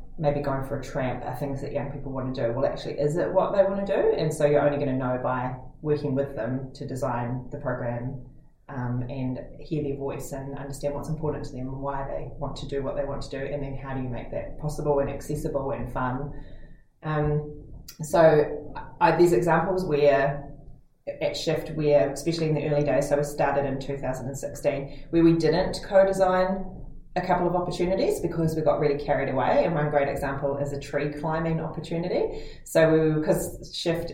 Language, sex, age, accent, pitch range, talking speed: English, female, 20-39, Australian, 135-150 Hz, 205 wpm